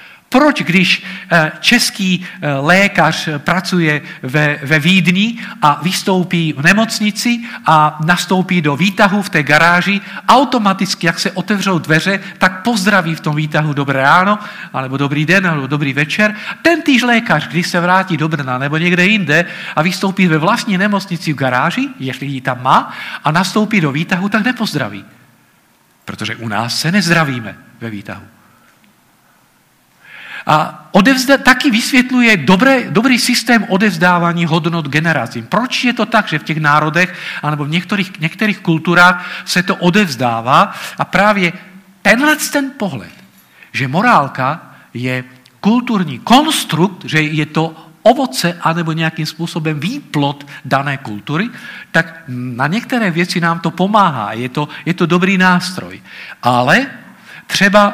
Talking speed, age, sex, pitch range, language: 140 wpm, 50-69, male, 150-205 Hz, Czech